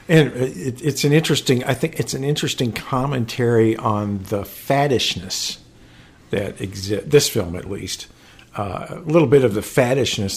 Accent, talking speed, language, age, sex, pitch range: American, 155 wpm, English, 50-69, male, 100-120 Hz